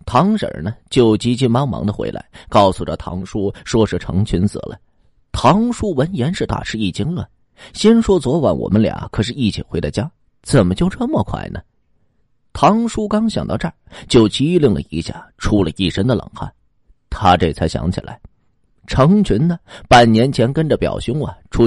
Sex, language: male, Chinese